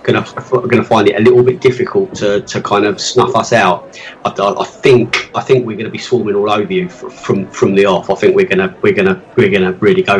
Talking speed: 240 wpm